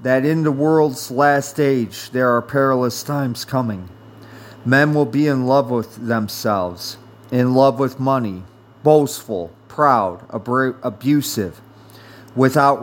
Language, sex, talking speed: English, male, 120 wpm